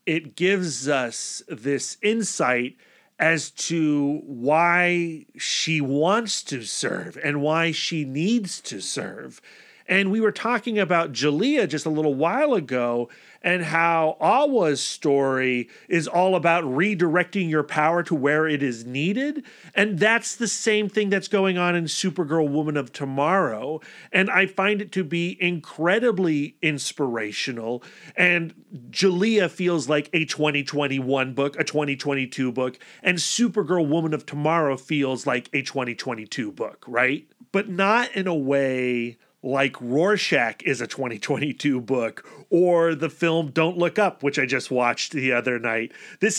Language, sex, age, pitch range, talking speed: English, male, 40-59, 140-180 Hz, 145 wpm